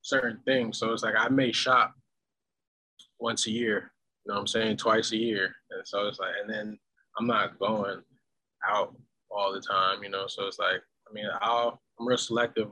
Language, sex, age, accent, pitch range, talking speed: English, male, 20-39, American, 110-135 Hz, 205 wpm